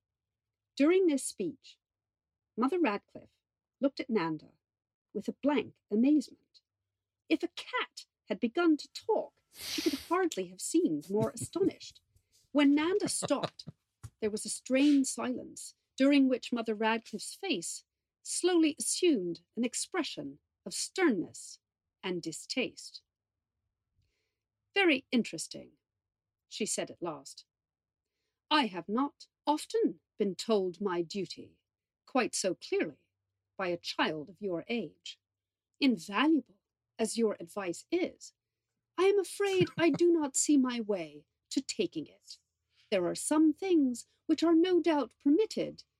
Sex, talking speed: female, 125 wpm